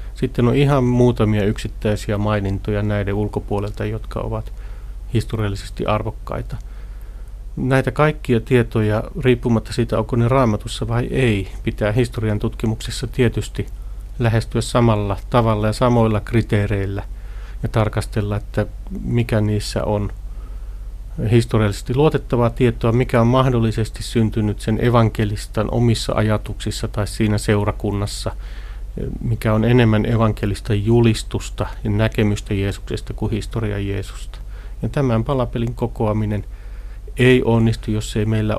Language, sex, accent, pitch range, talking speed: Finnish, male, native, 100-115 Hz, 110 wpm